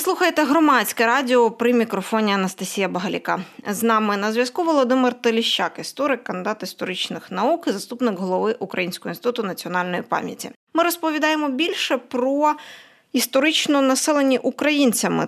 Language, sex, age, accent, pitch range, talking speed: Ukrainian, female, 20-39, native, 205-270 Hz, 125 wpm